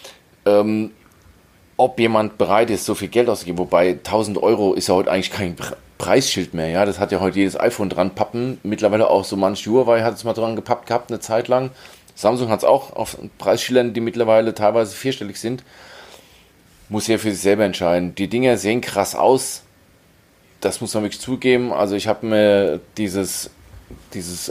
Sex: male